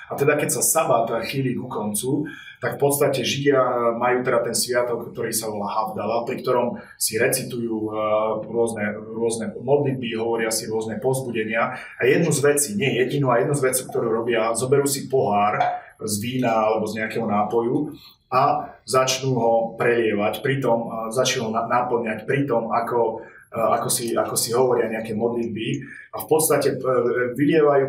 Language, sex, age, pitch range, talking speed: Slovak, male, 20-39, 115-140 Hz, 160 wpm